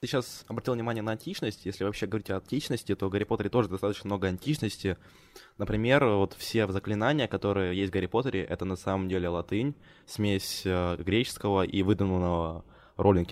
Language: Ukrainian